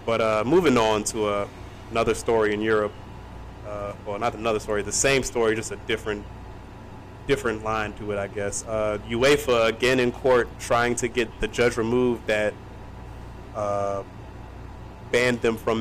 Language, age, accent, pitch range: English, 20-39, American, 105-130 Hz